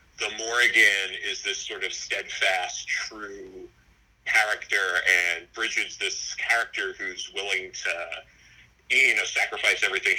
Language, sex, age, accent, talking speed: English, male, 40-59, American, 120 wpm